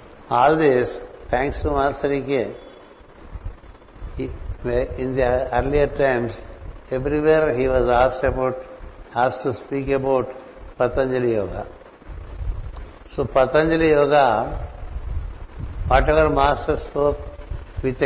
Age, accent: 60-79, Indian